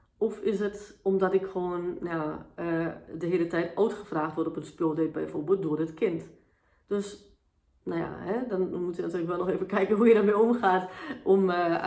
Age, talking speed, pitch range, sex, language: 30-49, 200 wpm, 155-180 Hz, female, Dutch